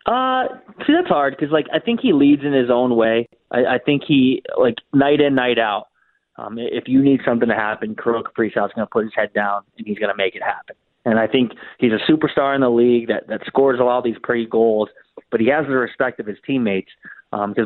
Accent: American